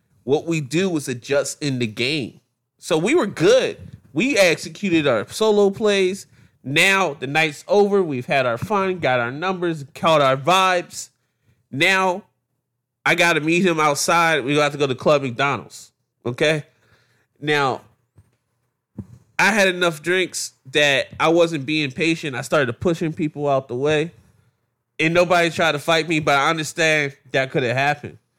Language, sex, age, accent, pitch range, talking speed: English, male, 20-39, American, 125-165 Hz, 160 wpm